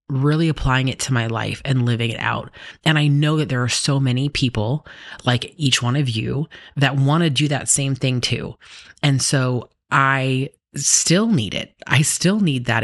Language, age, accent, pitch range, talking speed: English, 30-49, American, 115-140 Hz, 195 wpm